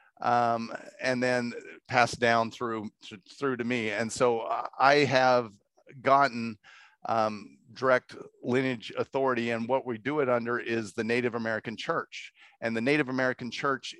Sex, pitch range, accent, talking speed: male, 115-130 Hz, American, 145 wpm